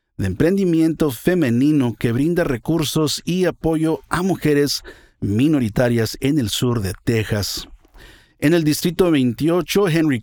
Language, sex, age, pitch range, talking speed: Spanish, male, 50-69, 120-155 Hz, 125 wpm